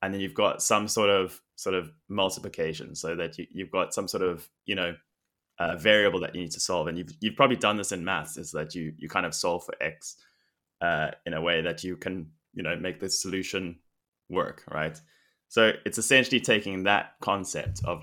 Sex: male